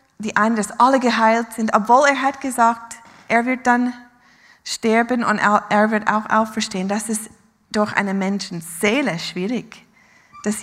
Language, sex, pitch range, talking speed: German, female, 190-235 Hz, 145 wpm